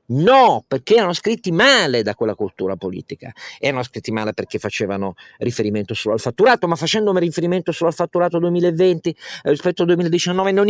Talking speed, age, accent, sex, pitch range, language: 175 wpm, 50-69, native, male, 125-180 Hz, Italian